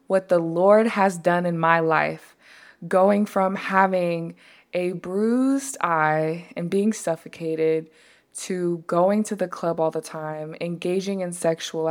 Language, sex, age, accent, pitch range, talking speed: English, female, 20-39, American, 170-205 Hz, 140 wpm